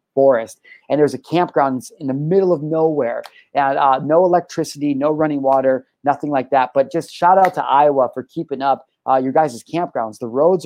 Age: 30-49